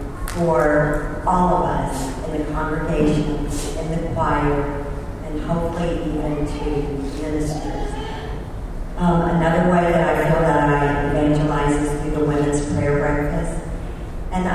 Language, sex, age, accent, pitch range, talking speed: English, female, 50-69, American, 145-165 Hz, 130 wpm